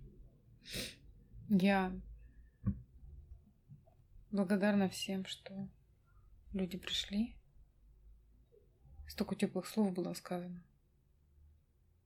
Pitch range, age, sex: 170-200 Hz, 20-39, female